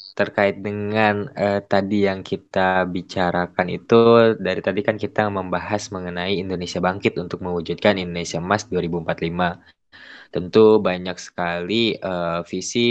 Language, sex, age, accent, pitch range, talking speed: Indonesian, male, 10-29, native, 90-105 Hz, 120 wpm